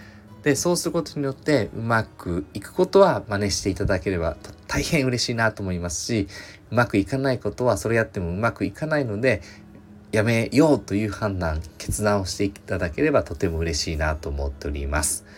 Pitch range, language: 90-125 Hz, Japanese